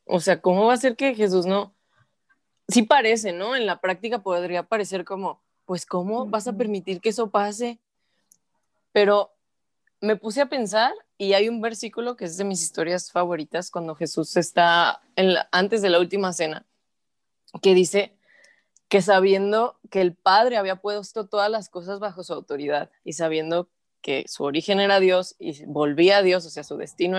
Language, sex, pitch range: Spanish, female, 175-225 Hz